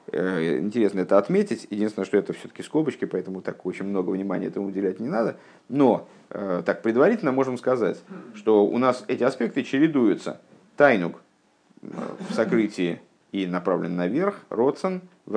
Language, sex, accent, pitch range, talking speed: Russian, male, native, 100-140 Hz, 140 wpm